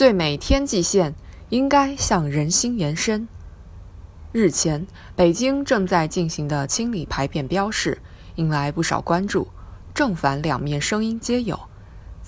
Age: 20-39